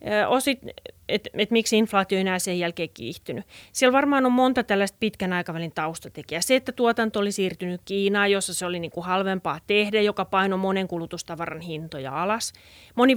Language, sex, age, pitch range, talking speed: Finnish, female, 30-49, 170-210 Hz, 170 wpm